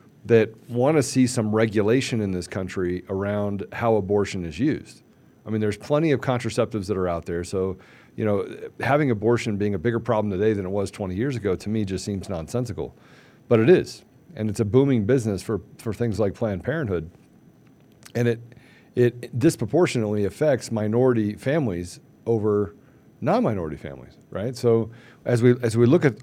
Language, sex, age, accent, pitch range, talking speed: English, male, 40-59, American, 100-120 Hz, 175 wpm